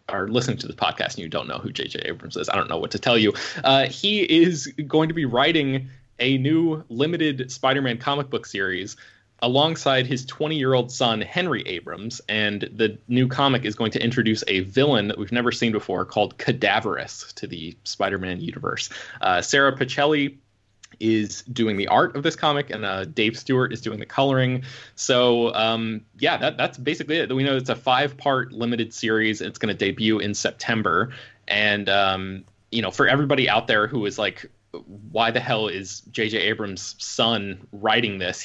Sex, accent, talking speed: male, American, 185 wpm